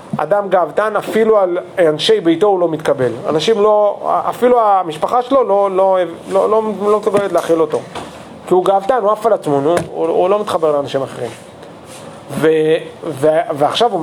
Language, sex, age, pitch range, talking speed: Hebrew, male, 40-59, 175-240 Hz, 160 wpm